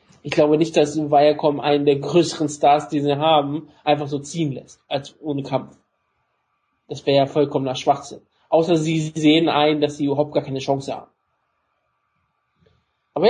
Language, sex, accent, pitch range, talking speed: German, male, German, 145-165 Hz, 165 wpm